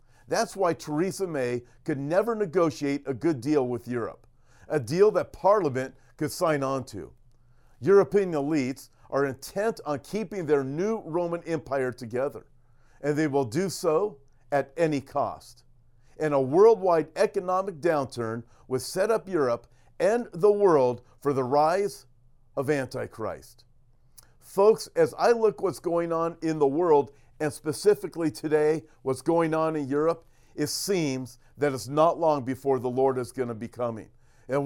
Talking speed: 155 wpm